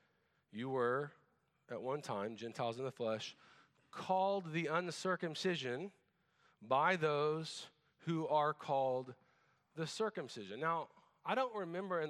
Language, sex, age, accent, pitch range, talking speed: English, male, 40-59, American, 130-185 Hz, 120 wpm